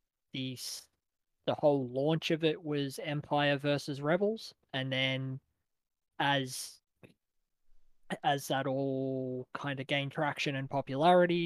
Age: 20-39